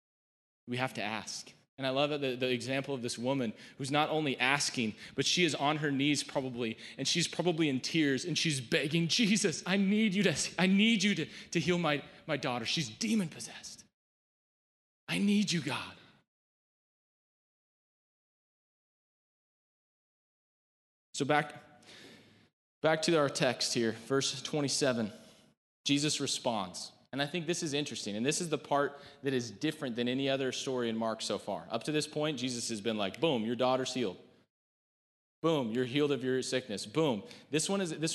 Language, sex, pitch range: English, male, 130-170 Hz